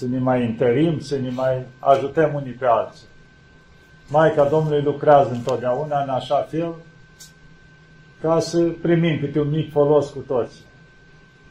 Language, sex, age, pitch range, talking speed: Romanian, male, 50-69, 140-160 Hz, 145 wpm